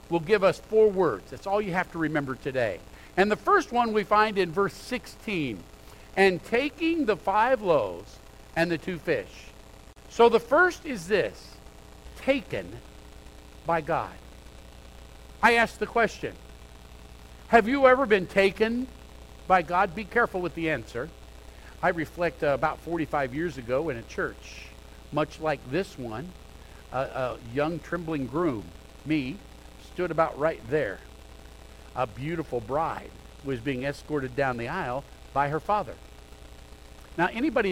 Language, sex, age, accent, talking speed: English, male, 50-69, American, 145 wpm